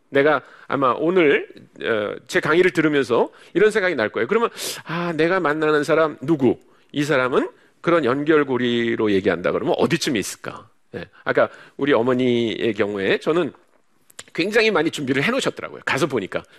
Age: 40-59